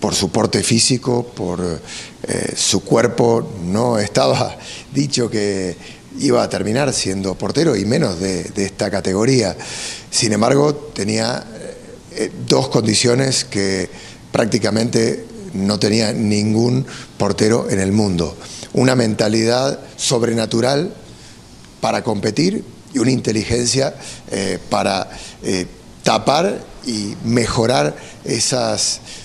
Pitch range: 100-120 Hz